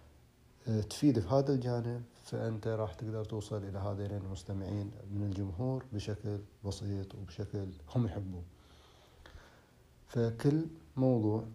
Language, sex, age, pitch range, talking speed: Arabic, male, 30-49, 95-115 Hz, 105 wpm